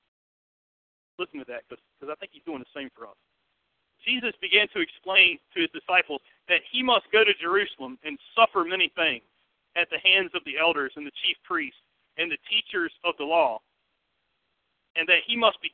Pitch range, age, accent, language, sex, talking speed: 175-275 Hz, 40-59, American, English, male, 190 wpm